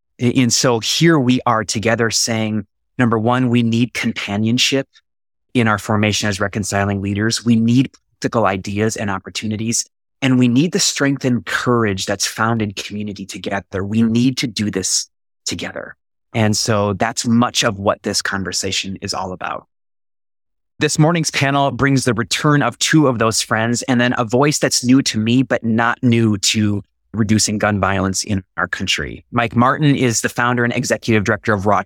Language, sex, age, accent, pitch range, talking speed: English, male, 30-49, American, 105-125 Hz, 175 wpm